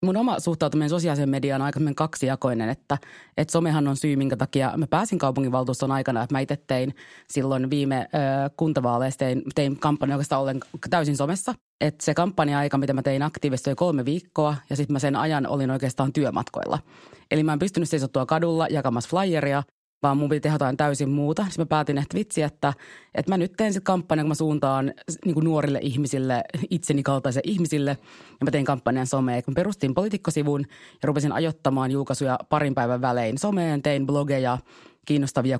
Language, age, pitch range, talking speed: Finnish, 30-49, 135-155 Hz, 180 wpm